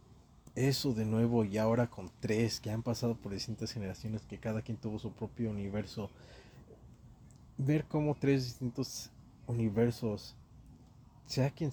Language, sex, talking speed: Spanish, male, 140 wpm